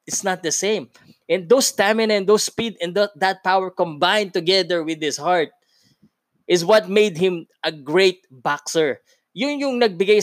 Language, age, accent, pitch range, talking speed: Filipino, 20-39, native, 130-205 Hz, 170 wpm